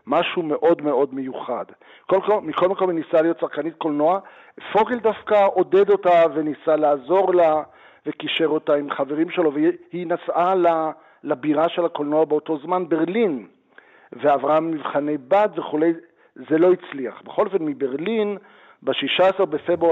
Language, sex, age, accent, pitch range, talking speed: Hebrew, male, 50-69, native, 150-195 Hz, 140 wpm